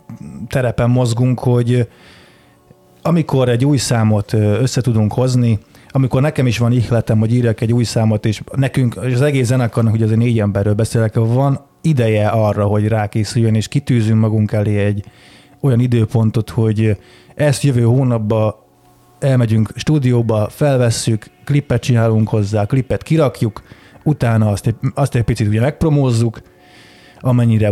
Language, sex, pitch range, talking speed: Hungarian, male, 110-130 Hz, 130 wpm